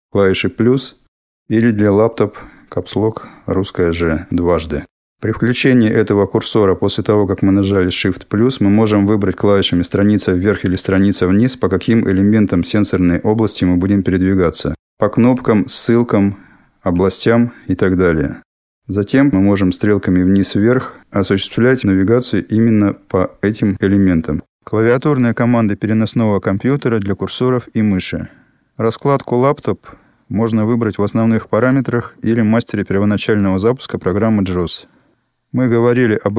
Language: Russian